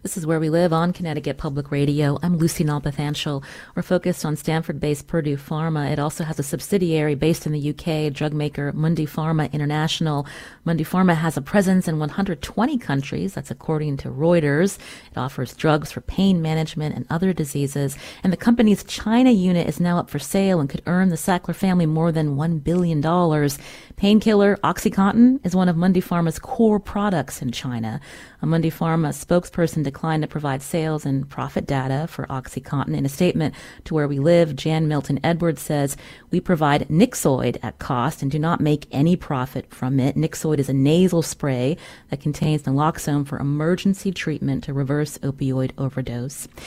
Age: 30-49